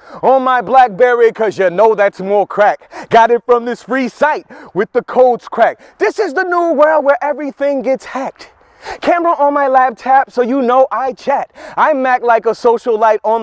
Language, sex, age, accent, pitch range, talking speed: English, male, 30-49, American, 225-290 Hz, 195 wpm